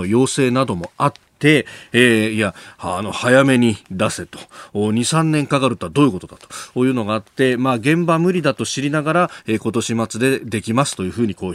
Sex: male